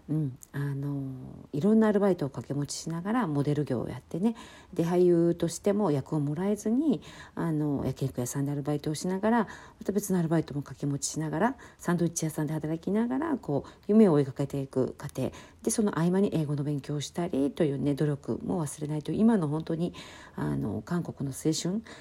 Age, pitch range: 50-69, 145-195 Hz